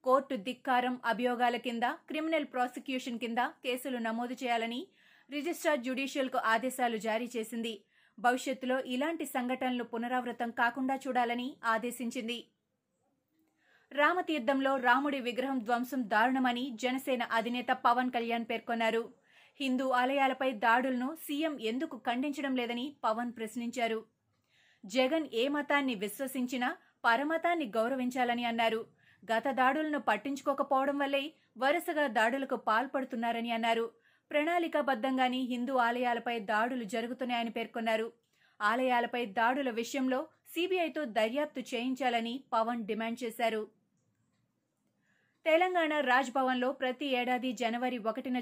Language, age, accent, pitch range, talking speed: Telugu, 30-49, native, 235-270 Hz, 95 wpm